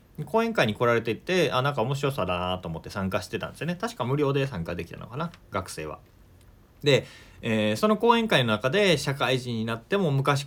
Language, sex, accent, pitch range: Japanese, male, native, 100-160 Hz